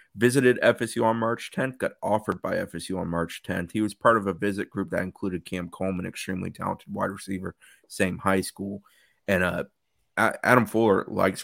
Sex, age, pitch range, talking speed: male, 30-49, 90-105 Hz, 185 wpm